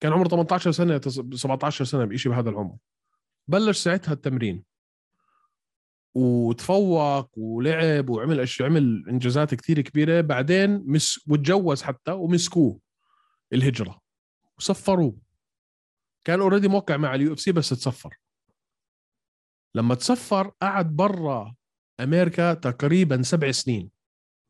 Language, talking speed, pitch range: Arabic, 110 wpm, 125-175 Hz